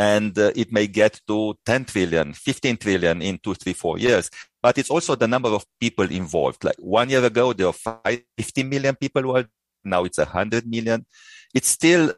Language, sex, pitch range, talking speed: English, male, 100-130 Hz, 195 wpm